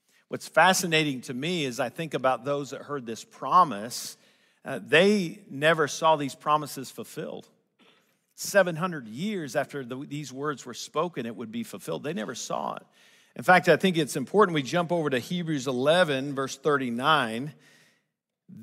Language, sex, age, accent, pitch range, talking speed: English, male, 50-69, American, 130-165 Hz, 160 wpm